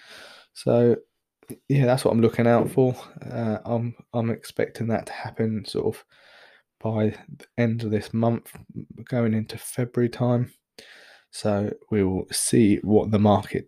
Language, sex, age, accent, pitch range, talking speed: English, male, 20-39, British, 105-120 Hz, 150 wpm